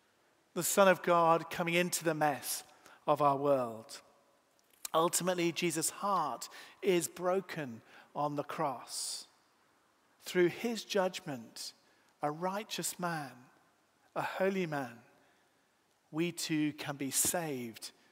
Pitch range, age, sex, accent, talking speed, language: 145-185 Hz, 50-69, male, British, 110 wpm, English